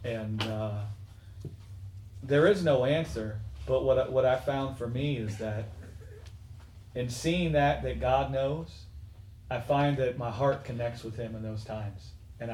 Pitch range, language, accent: 105-165 Hz, English, American